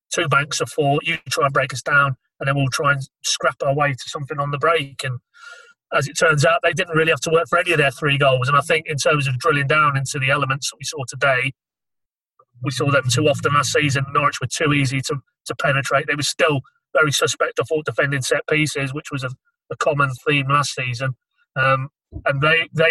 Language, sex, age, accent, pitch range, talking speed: English, male, 30-49, British, 135-155 Hz, 240 wpm